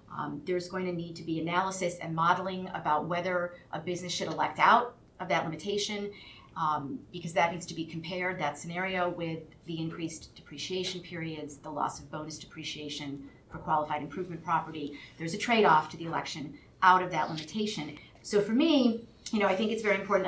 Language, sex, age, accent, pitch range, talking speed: English, female, 40-59, American, 155-185 Hz, 185 wpm